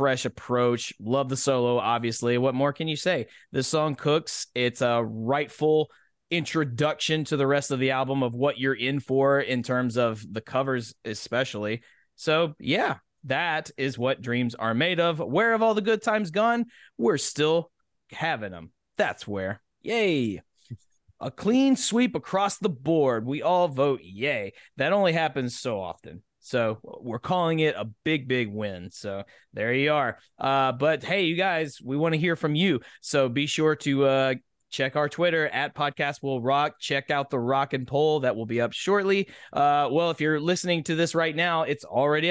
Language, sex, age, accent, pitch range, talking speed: English, male, 20-39, American, 125-170 Hz, 185 wpm